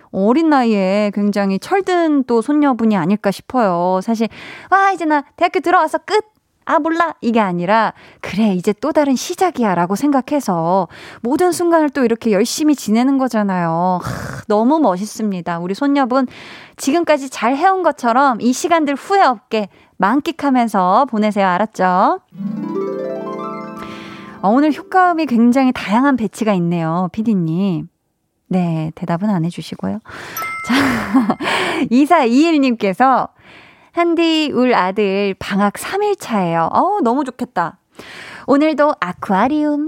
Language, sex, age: Korean, female, 20-39